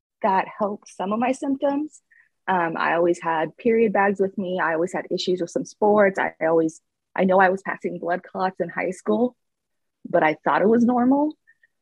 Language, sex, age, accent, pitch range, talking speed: English, female, 20-39, American, 165-215 Hz, 205 wpm